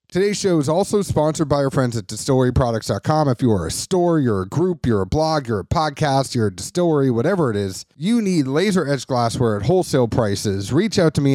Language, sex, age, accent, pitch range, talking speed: English, male, 30-49, American, 125-165 Hz, 215 wpm